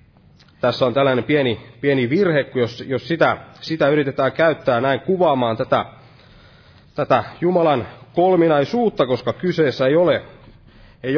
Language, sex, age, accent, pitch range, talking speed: Finnish, male, 30-49, native, 120-165 Hz, 130 wpm